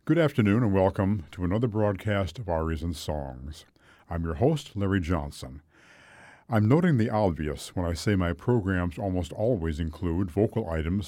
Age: 60-79